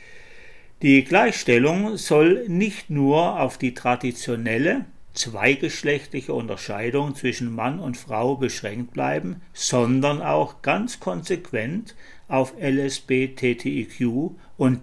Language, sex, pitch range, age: German, male, 120-140 Hz, 60-79